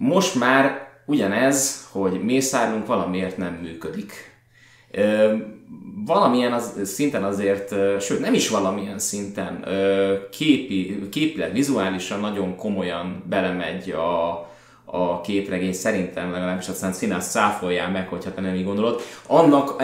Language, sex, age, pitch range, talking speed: Hungarian, male, 20-39, 95-125 Hz, 115 wpm